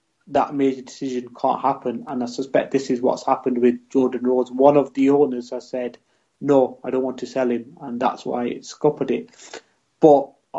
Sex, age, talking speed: male, 30-49, 200 wpm